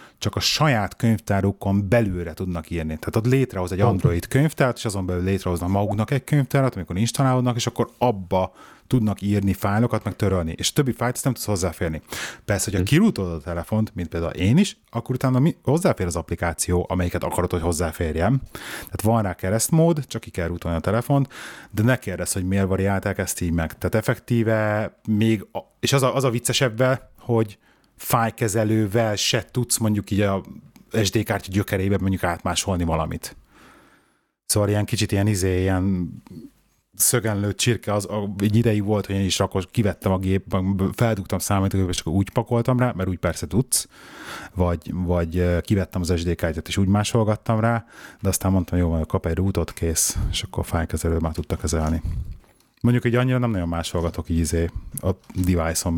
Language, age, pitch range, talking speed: Hungarian, 30-49, 90-115 Hz, 175 wpm